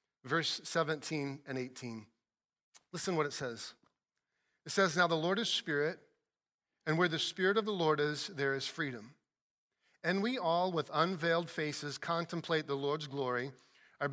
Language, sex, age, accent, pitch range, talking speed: English, male, 40-59, American, 140-170 Hz, 155 wpm